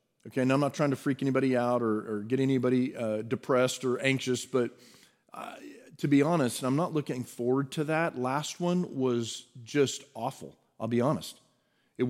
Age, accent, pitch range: 40-59, American, 125-150 Hz